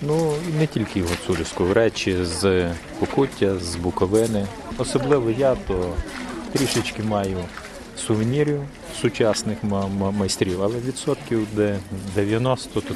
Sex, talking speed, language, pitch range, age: male, 100 wpm, Ukrainian, 95-125 Hz, 30-49